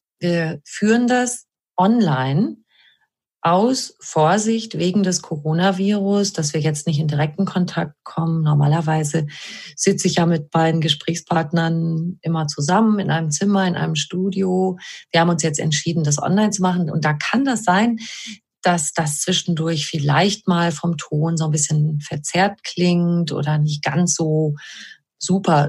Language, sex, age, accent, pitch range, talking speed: German, female, 30-49, German, 150-195 Hz, 145 wpm